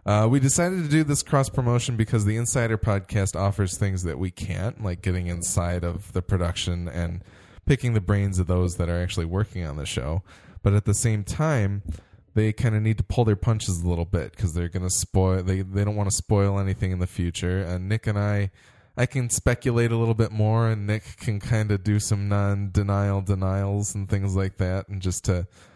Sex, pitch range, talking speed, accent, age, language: male, 90-115 Hz, 220 wpm, American, 20-39, English